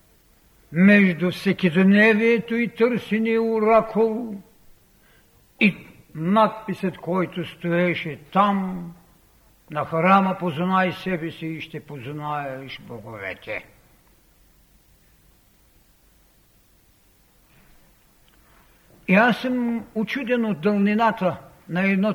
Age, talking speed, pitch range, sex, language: 60-79, 75 wpm, 160-215 Hz, male, Bulgarian